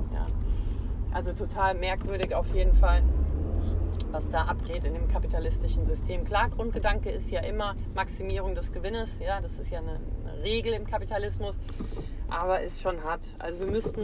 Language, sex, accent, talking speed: German, female, German, 160 wpm